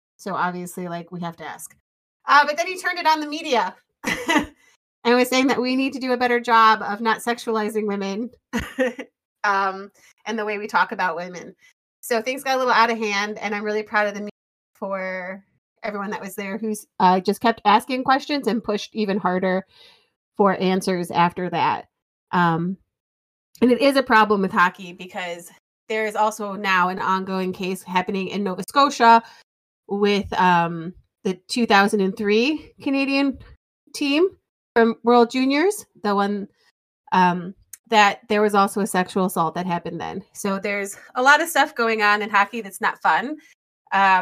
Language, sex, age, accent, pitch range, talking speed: English, female, 30-49, American, 190-230 Hz, 175 wpm